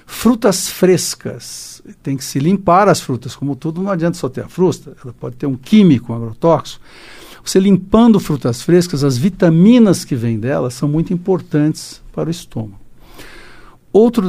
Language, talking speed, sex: Portuguese, 165 wpm, male